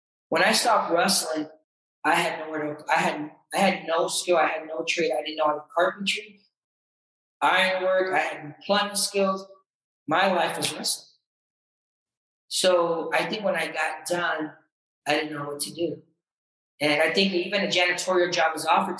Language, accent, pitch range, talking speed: English, American, 155-195 Hz, 175 wpm